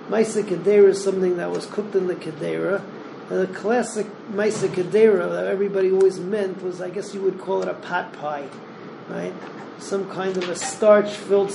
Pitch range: 175-205 Hz